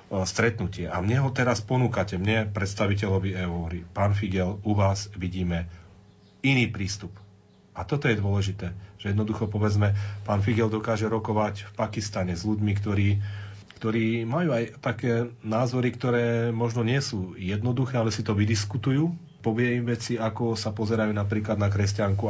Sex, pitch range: male, 100-110 Hz